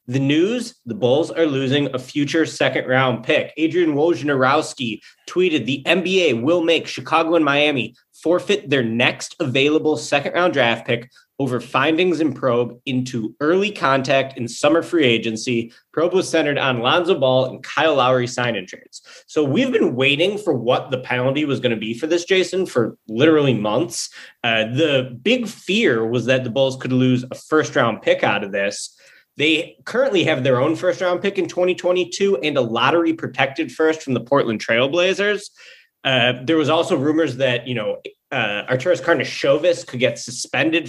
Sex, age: male, 20-39